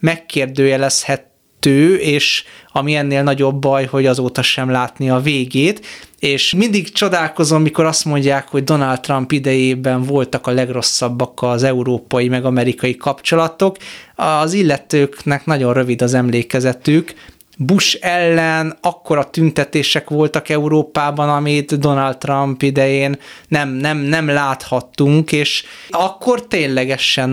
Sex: male